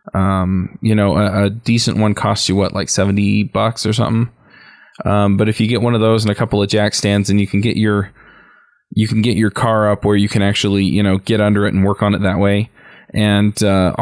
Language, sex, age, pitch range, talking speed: English, male, 20-39, 100-110 Hz, 245 wpm